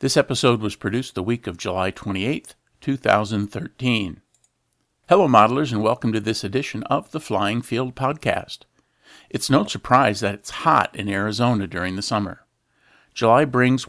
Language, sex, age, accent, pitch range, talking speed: English, male, 50-69, American, 105-135 Hz, 150 wpm